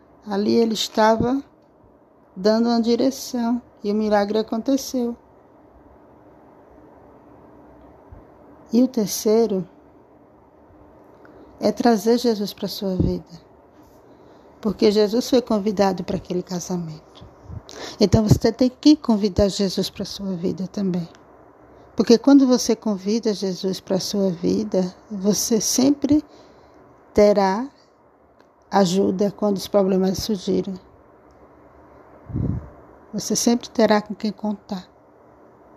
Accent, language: Brazilian, Portuguese